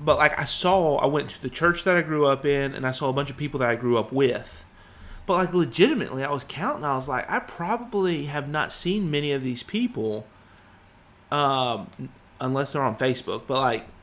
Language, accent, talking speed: English, American, 220 wpm